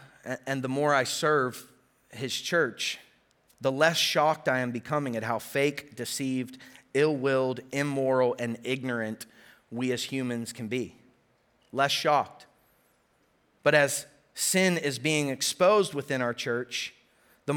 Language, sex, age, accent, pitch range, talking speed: English, male, 30-49, American, 130-170 Hz, 130 wpm